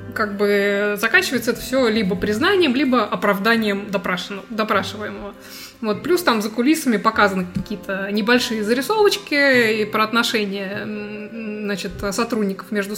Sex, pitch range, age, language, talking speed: female, 205-245 Hz, 20-39, Russian, 115 wpm